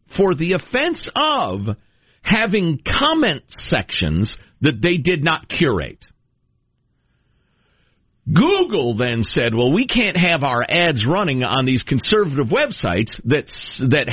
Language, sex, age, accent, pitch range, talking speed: English, male, 50-69, American, 120-180 Hz, 115 wpm